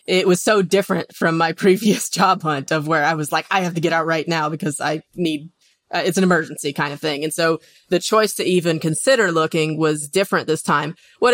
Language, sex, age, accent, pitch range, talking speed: English, female, 20-39, American, 155-185 Hz, 235 wpm